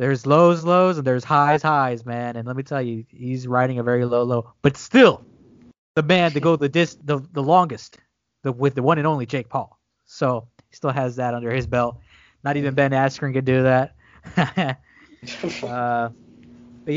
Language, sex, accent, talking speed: English, male, American, 195 wpm